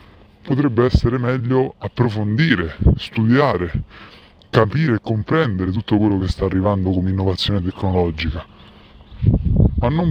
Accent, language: native, Italian